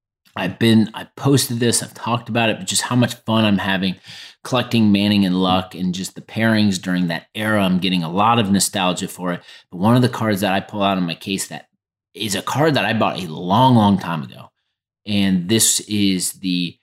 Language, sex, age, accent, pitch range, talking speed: English, male, 30-49, American, 95-115 Hz, 225 wpm